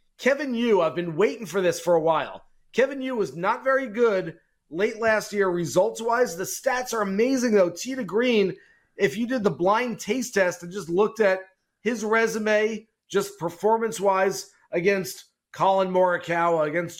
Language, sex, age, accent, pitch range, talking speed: English, male, 30-49, American, 180-220 Hz, 160 wpm